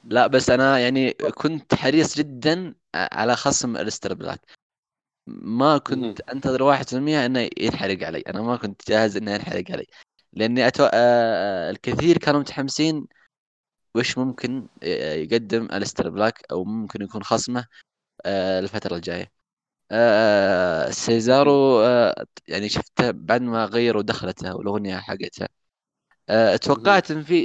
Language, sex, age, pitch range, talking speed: Arabic, male, 20-39, 105-135 Hz, 115 wpm